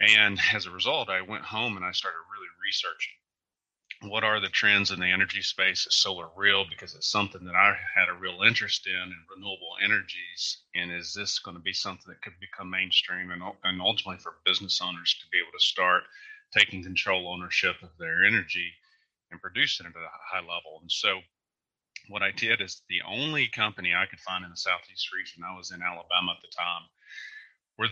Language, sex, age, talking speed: English, male, 30-49, 200 wpm